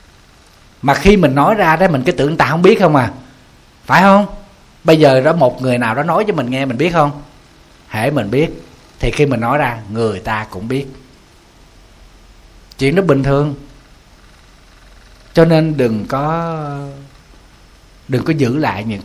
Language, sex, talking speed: Vietnamese, male, 175 wpm